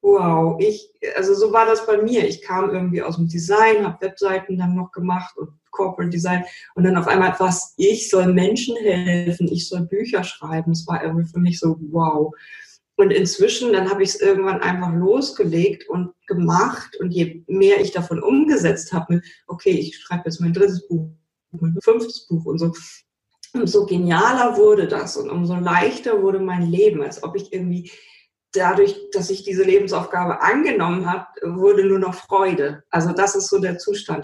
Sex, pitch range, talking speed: female, 170-205 Hz, 180 wpm